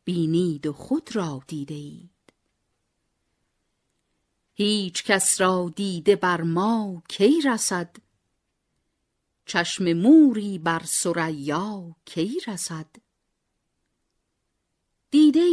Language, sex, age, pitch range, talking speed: Persian, female, 50-69, 165-215 Hz, 80 wpm